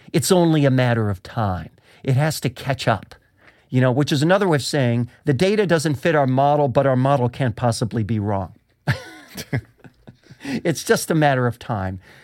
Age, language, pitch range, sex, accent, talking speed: 50-69, English, 120-160 Hz, male, American, 185 wpm